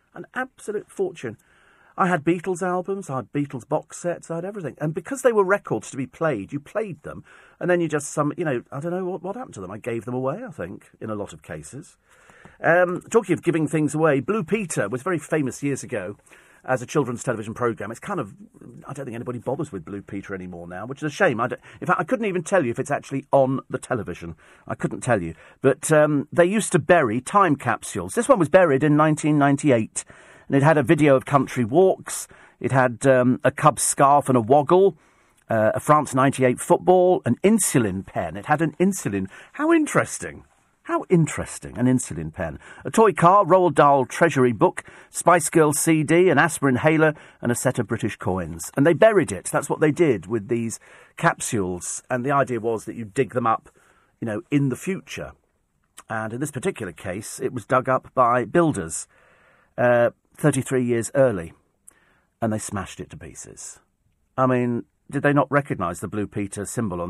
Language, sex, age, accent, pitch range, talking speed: English, male, 40-59, British, 120-170 Hz, 205 wpm